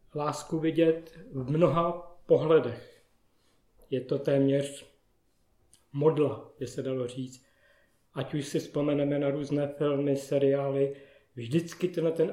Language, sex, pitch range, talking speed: Czech, male, 130-165 Hz, 115 wpm